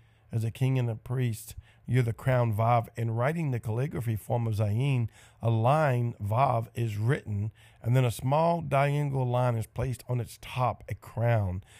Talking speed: 180 wpm